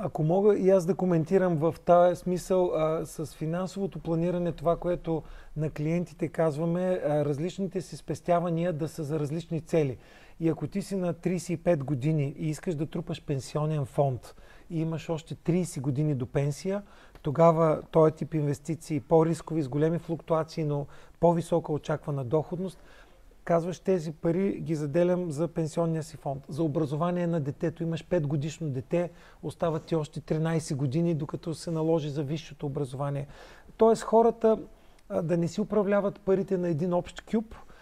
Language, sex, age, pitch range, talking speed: Bulgarian, male, 30-49, 155-185 Hz, 155 wpm